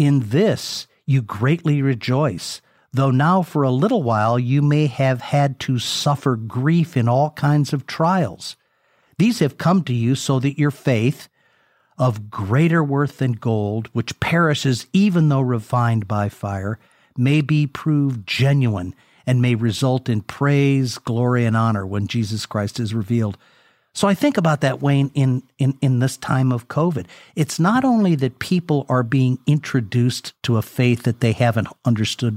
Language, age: English, 50-69